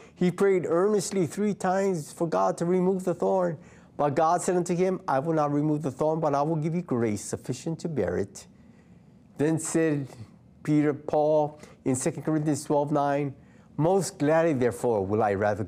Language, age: English, 50-69